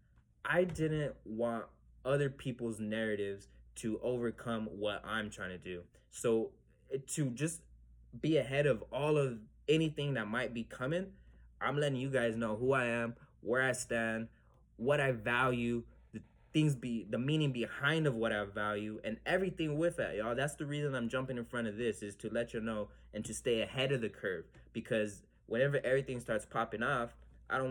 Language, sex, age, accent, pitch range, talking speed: English, male, 20-39, American, 110-135 Hz, 180 wpm